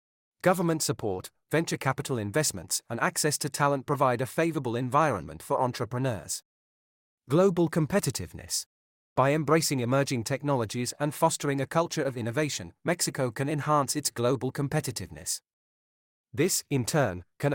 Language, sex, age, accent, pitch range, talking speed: English, male, 40-59, British, 115-150 Hz, 125 wpm